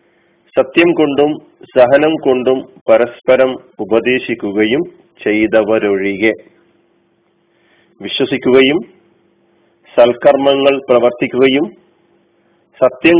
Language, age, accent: Malayalam, 40-59, native